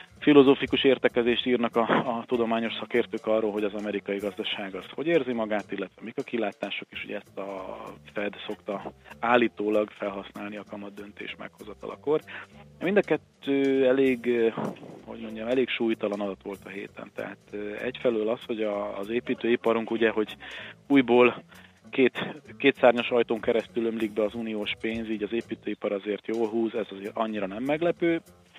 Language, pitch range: Hungarian, 105-120 Hz